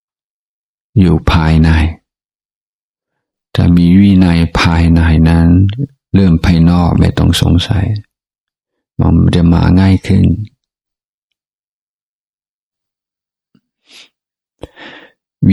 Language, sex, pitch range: Thai, male, 85-95 Hz